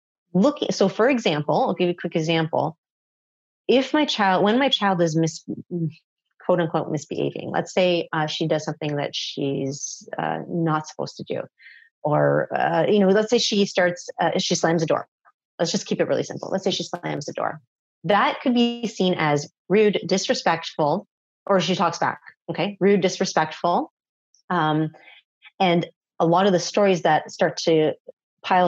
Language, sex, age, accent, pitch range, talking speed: English, female, 30-49, American, 155-190 Hz, 175 wpm